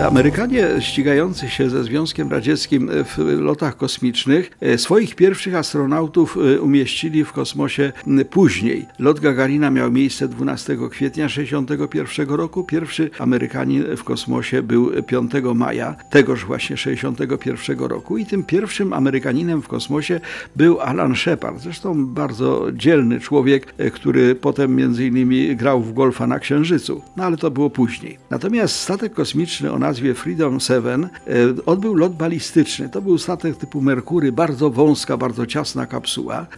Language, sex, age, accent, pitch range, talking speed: Polish, male, 50-69, native, 130-160 Hz, 135 wpm